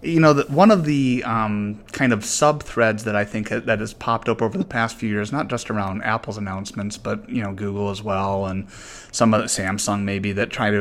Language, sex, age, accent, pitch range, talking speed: English, male, 30-49, American, 105-120 Hz, 230 wpm